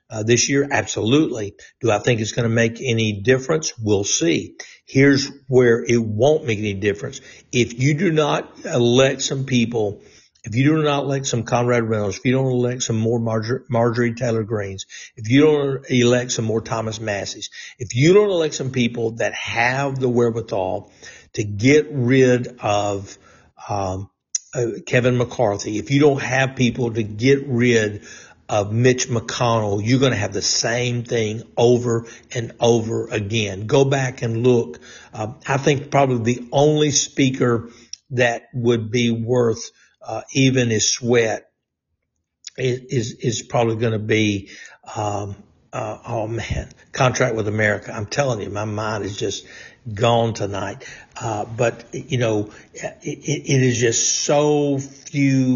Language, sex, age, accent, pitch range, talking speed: English, male, 60-79, American, 110-130 Hz, 160 wpm